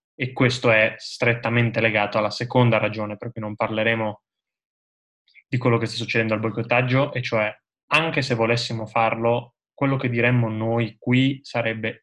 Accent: native